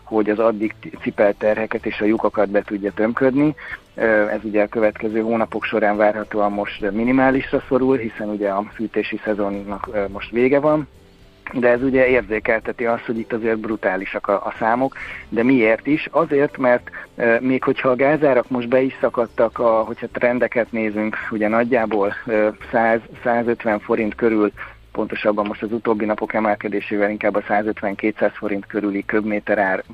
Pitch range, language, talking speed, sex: 105-120 Hz, Hungarian, 145 wpm, male